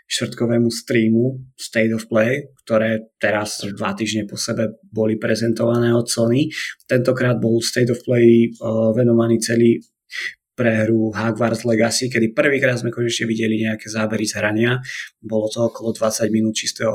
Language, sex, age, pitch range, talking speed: Slovak, male, 20-39, 110-115 Hz, 145 wpm